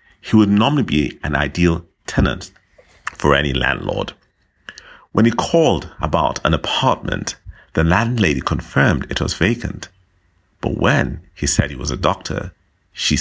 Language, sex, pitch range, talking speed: English, male, 80-95 Hz, 140 wpm